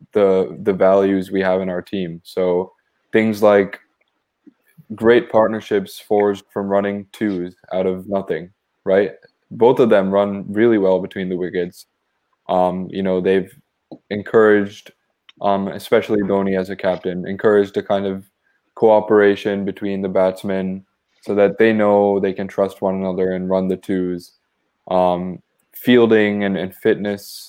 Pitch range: 95-105 Hz